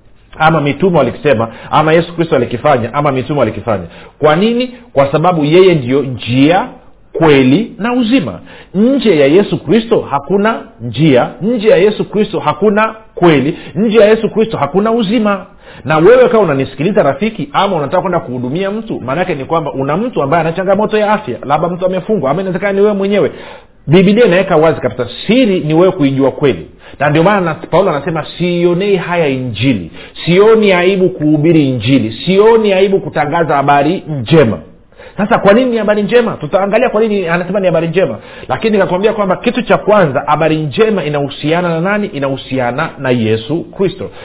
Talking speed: 160 wpm